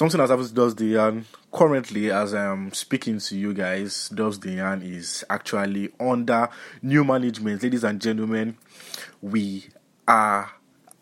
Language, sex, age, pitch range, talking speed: English, male, 20-39, 100-115 Hz, 130 wpm